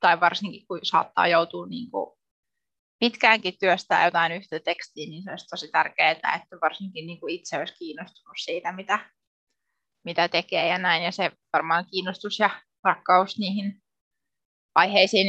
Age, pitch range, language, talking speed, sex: 20-39, 180-220 Hz, Finnish, 145 wpm, female